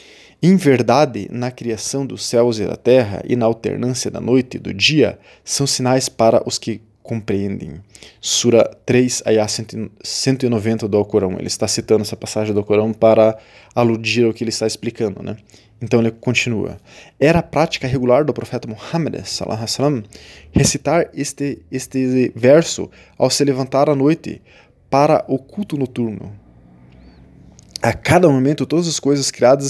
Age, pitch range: 20-39, 110-135 Hz